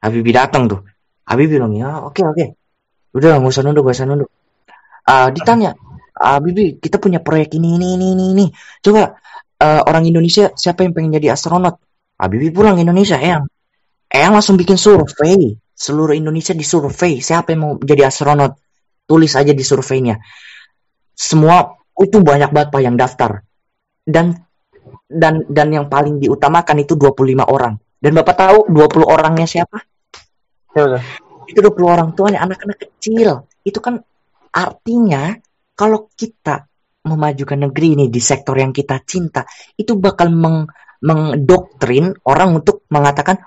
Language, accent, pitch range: Indonesian, native, 140-185 Hz